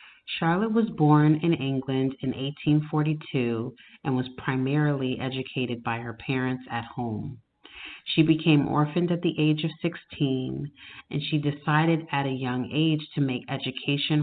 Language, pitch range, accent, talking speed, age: English, 125-150 Hz, American, 145 wpm, 30-49